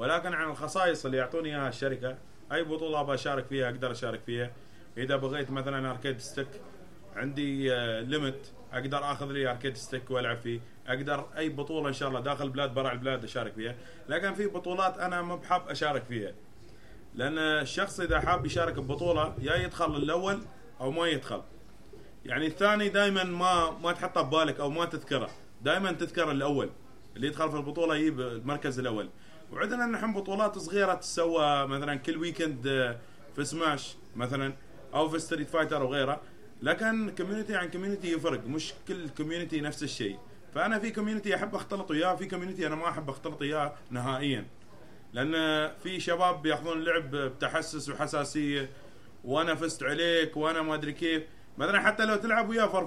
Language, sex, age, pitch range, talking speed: Arabic, male, 30-49, 135-175 Hz, 160 wpm